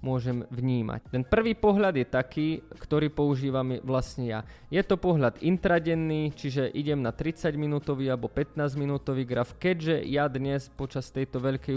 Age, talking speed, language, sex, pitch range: 20-39, 145 wpm, Slovak, male, 130-150 Hz